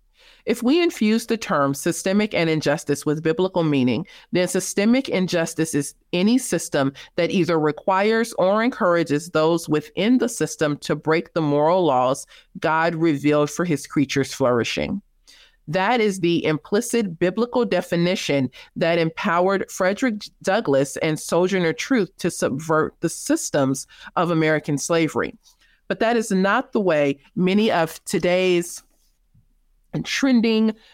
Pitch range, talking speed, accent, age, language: 150-195 Hz, 130 wpm, American, 40-59, English